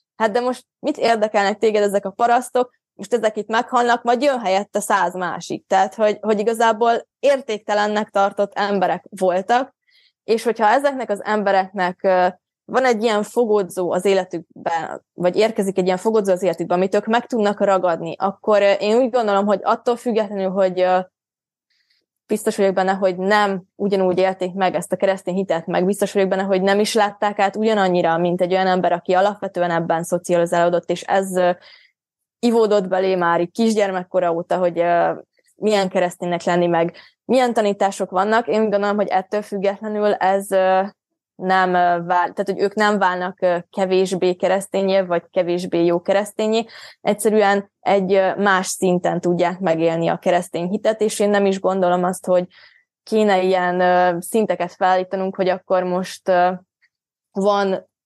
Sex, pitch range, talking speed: female, 180-210 Hz, 150 wpm